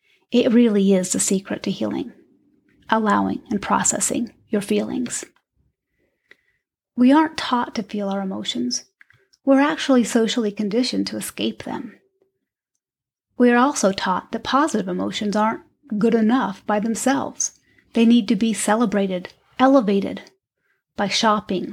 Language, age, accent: English, 30-49, American